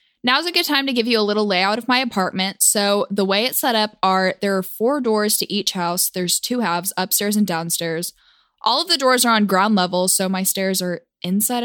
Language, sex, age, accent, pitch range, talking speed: English, female, 10-29, American, 190-250 Hz, 235 wpm